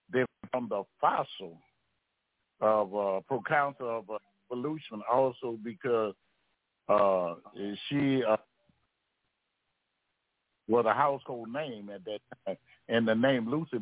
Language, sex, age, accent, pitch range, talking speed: English, male, 60-79, American, 110-135 Hz, 110 wpm